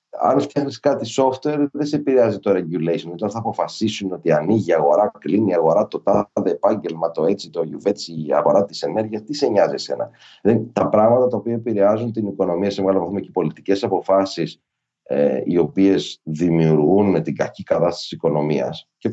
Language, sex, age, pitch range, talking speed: Greek, male, 30-49, 100-150 Hz, 185 wpm